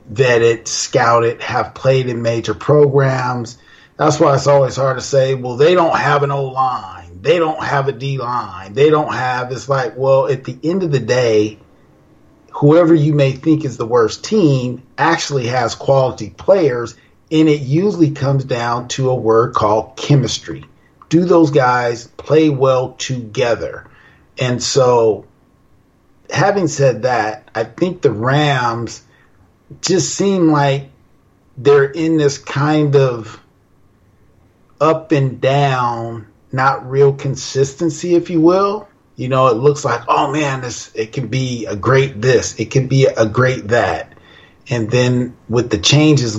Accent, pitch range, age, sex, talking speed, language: American, 115-145 Hz, 40-59, male, 150 wpm, English